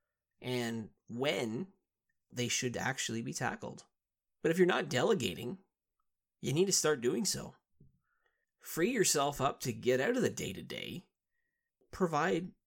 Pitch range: 120-160 Hz